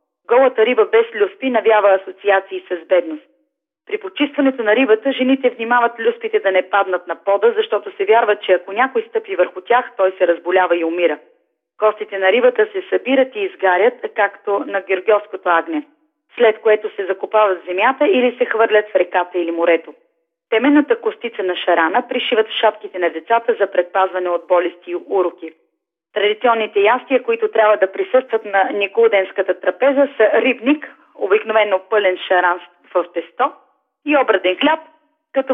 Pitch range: 185-270 Hz